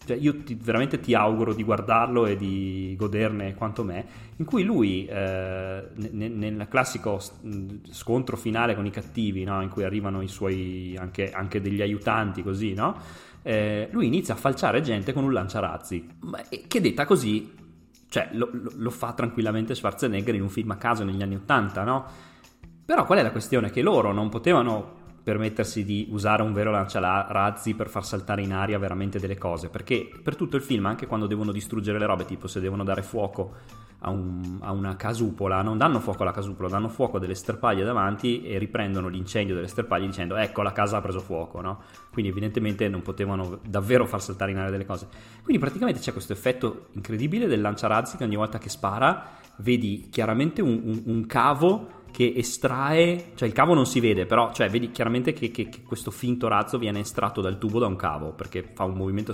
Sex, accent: male, native